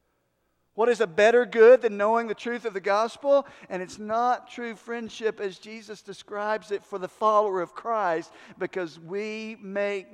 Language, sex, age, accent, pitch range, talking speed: English, male, 50-69, American, 160-225 Hz, 170 wpm